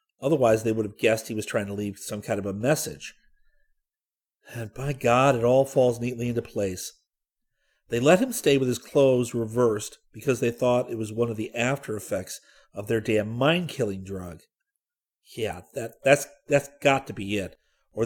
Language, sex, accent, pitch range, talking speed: English, male, American, 110-150 Hz, 180 wpm